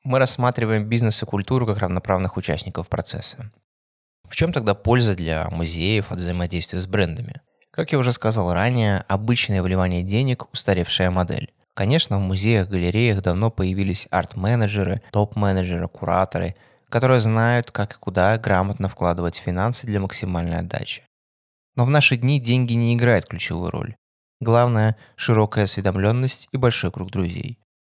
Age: 20-39